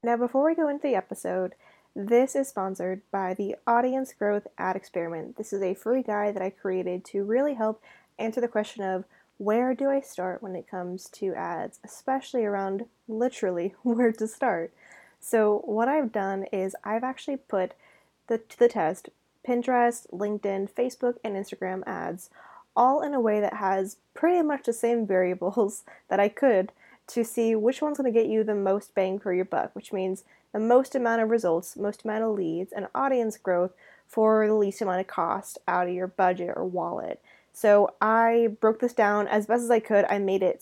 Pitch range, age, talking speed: 195-235 Hz, 20-39, 190 wpm